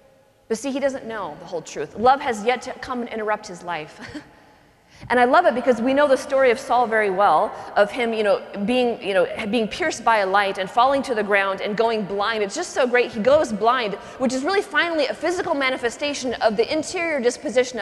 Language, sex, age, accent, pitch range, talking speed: English, female, 30-49, American, 230-300 Hz, 230 wpm